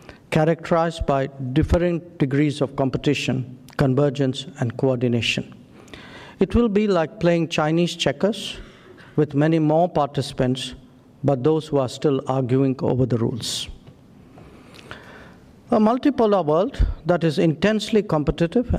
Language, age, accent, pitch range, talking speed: English, 50-69, Indian, 135-170 Hz, 115 wpm